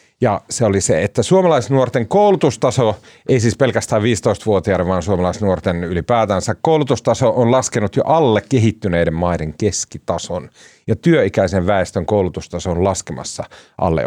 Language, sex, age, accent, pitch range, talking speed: Finnish, male, 40-59, native, 90-130 Hz, 125 wpm